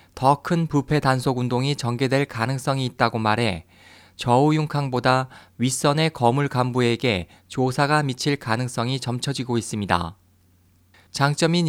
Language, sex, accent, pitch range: Korean, male, native, 100-150 Hz